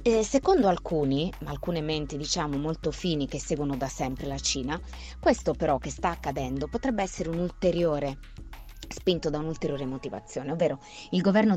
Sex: female